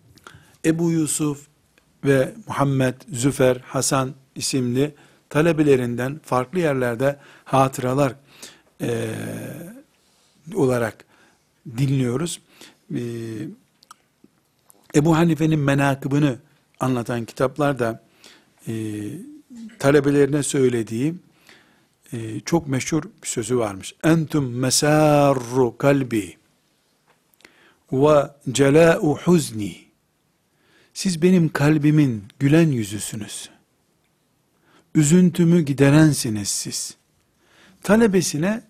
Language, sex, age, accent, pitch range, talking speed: Turkish, male, 60-79, native, 130-160 Hz, 70 wpm